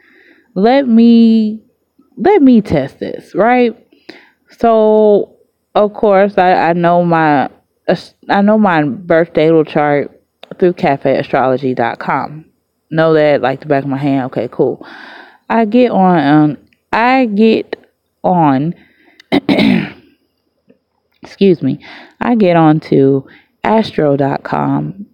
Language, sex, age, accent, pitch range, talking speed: English, female, 20-39, American, 145-220 Hz, 110 wpm